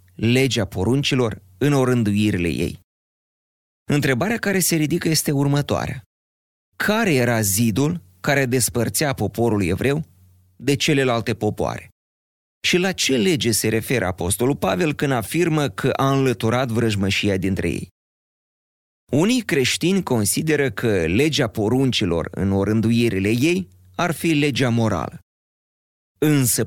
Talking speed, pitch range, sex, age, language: 115 wpm, 105-135 Hz, male, 30-49, Romanian